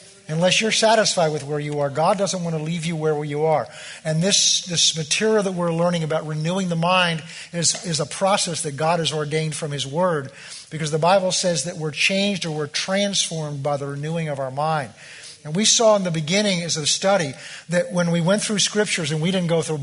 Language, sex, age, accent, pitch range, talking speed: English, male, 50-69, American, 150-185 Hz, 225 wpm